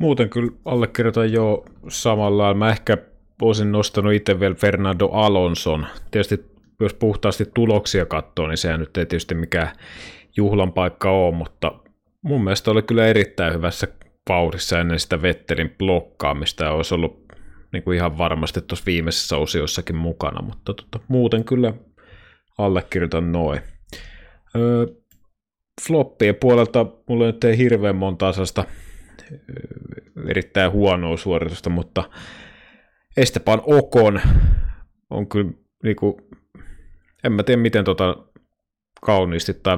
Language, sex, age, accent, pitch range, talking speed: Finnish, male, 30-49, native, 85-110 Hz, 120 wpm